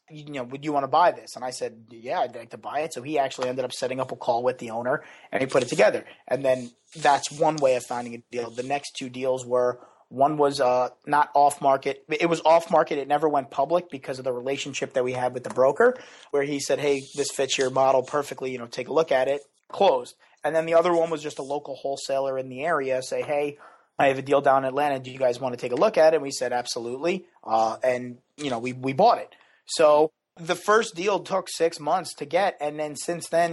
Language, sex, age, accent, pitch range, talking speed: English, male, 30-49, American, 130-150 Hz, 260 wpm